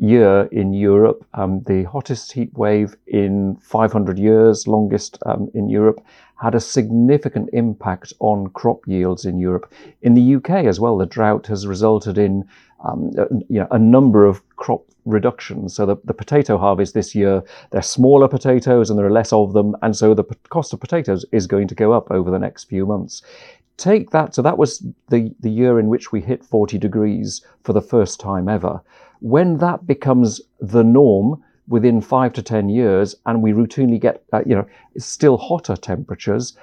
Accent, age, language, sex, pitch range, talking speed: British, 50-69, English, male, 105-130 Hz, 185 wpm